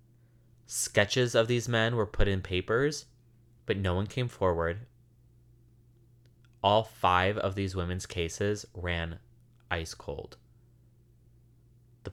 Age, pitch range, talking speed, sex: 20-39, 95-120 Hz, 115 wpm, male